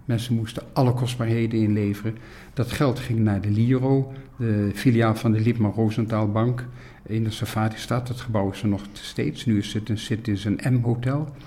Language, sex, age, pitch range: Dutch, male, 50-69, 105-120 Hz